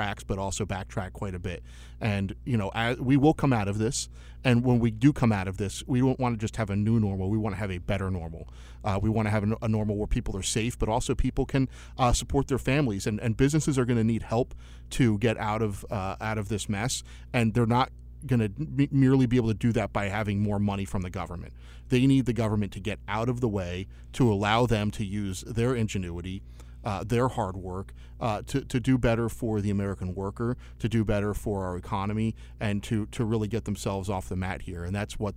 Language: English